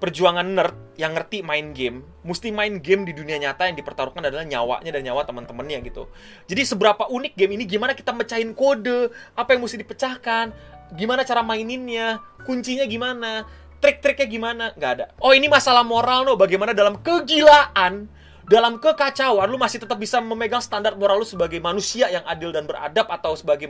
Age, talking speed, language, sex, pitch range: 20-39, 175 wpm, Indonesian, male, 185-245 Hz